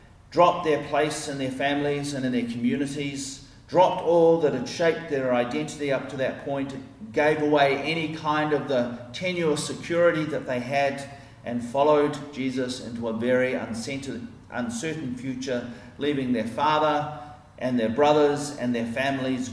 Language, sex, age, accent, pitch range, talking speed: English, male, 40-59, Australian, 110-150 Hz, 150 wpm